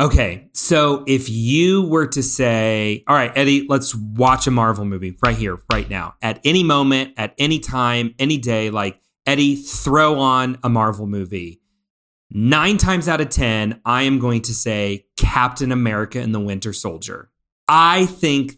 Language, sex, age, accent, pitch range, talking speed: English, male, 30-49, American, 110-140 Hz, 170 wpm